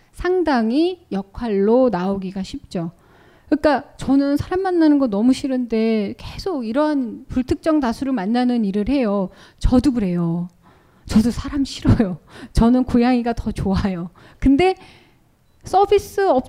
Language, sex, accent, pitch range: Korean, female, native, 215-295 Hz